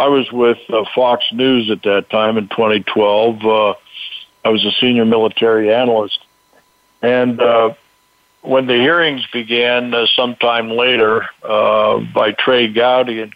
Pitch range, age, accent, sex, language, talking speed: 115-130 Hz, 60-79, American, male, English, 145 wpm